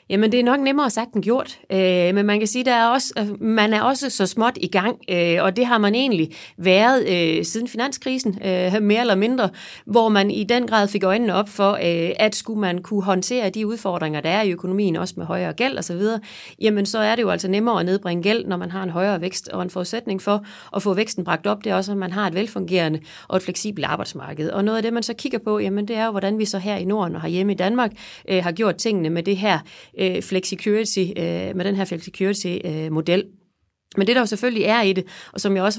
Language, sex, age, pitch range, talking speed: Danish, female, 30-49, 185-220 Hz, 245 wpm